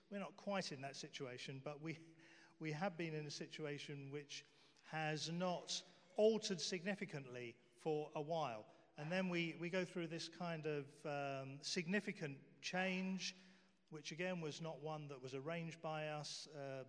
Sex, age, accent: male, 40-59, British